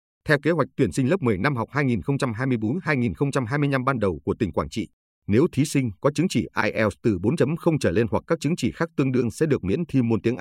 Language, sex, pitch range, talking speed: Vietnamese, male, 95-140 Hz, 230 wpm